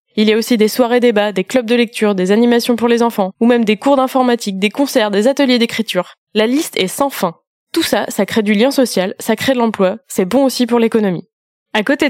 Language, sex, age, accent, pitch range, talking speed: French, female, 20-39, French, 215-260 Hz, 240 wpm